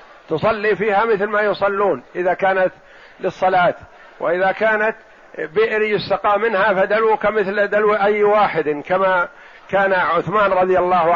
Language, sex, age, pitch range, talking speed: Arabic, male, 50-69, 175-200 Hz, 125 wpm